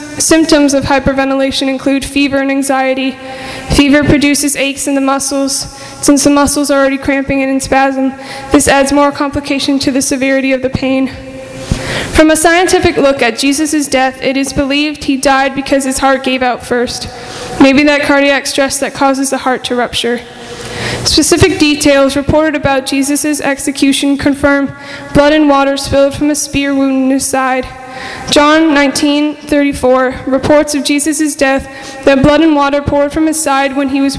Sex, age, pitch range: female, 20-39, 270-290 Hz